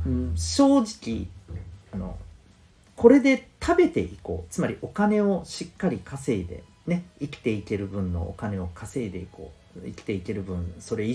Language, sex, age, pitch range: Japanese, male, 40-59, 85-120 Hz